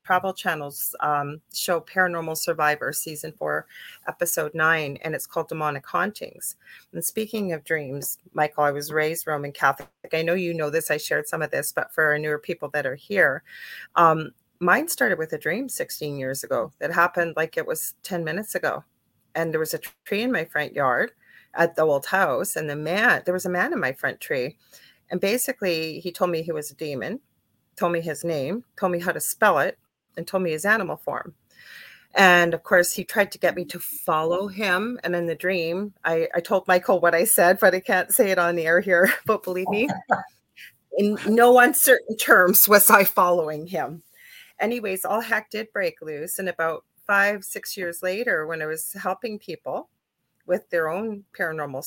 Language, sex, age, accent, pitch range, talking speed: English, female, 40-59, American, 160-200 Hz, 200 wpm